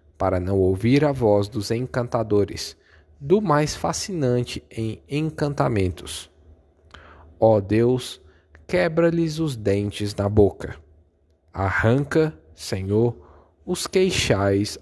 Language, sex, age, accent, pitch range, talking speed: Portuguese, male, 10-29, Brazilian, 85-130 Hz, 95 wpm